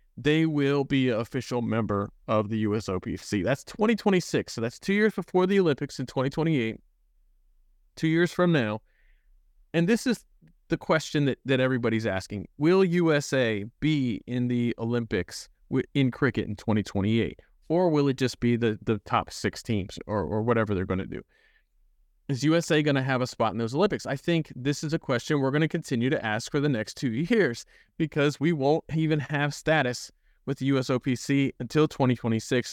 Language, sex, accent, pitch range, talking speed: English, male, American, 115-145 Hz, 180 wpm